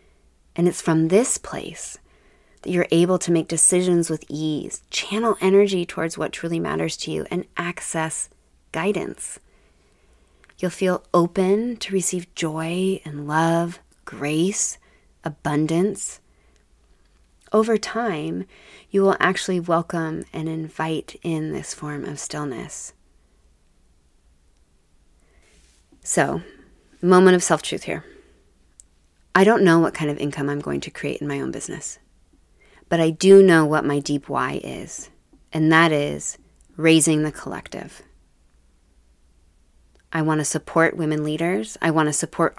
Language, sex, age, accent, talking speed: English, female, 30-49, American, 130 wpm